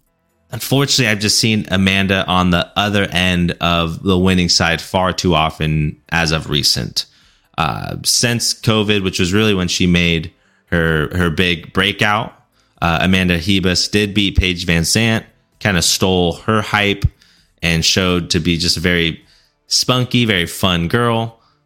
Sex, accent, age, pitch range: male, American, 30-49, 85-105 Hz